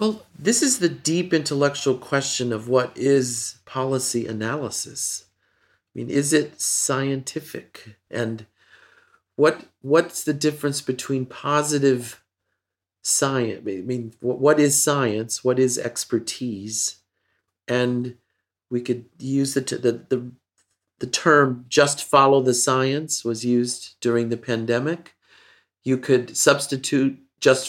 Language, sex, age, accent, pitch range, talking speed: English, male, 40-59, American, 115-140 Hz, 120 wpm